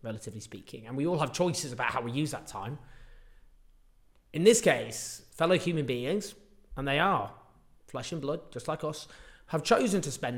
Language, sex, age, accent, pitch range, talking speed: English, male, 30-49, British, 120-155 Hz, 185 wpm